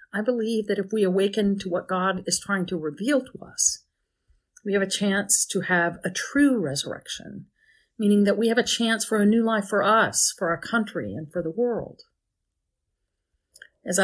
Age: 50-69